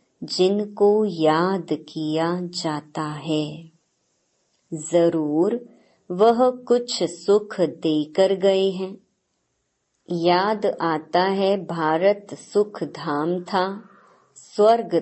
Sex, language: male, Hindi